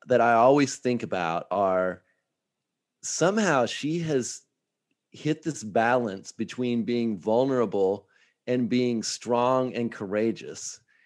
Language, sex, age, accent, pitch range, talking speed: English, male, 30-49, American, 115-145 Hz, 110 wpm